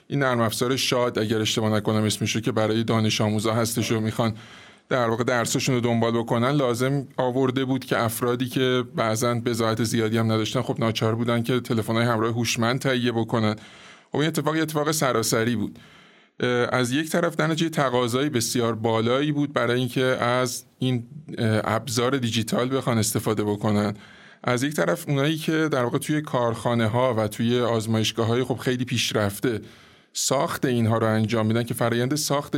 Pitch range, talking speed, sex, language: 115-130 Hz, 165 wpm, male, Persian